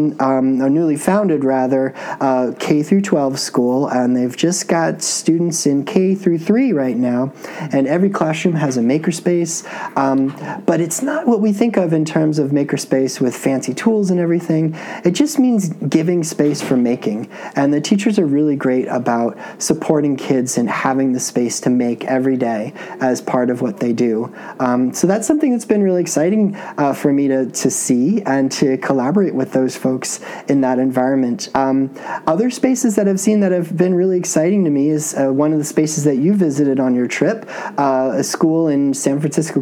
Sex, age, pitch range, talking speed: male, 30-49, 130-180 Hz, 190 wpm